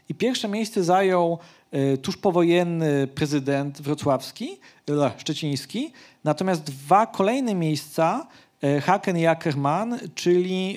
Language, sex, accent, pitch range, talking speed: Polish, male, native, 150-190 Hz, 95 wpm